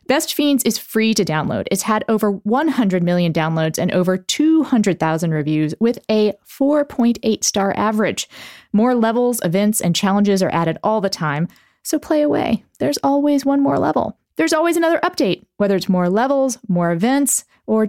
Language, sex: English, female